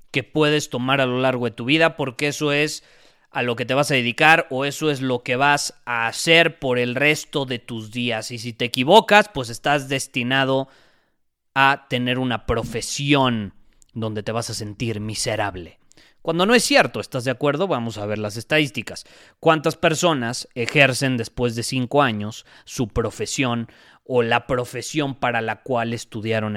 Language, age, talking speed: Spanish, 30-49, 175 wpm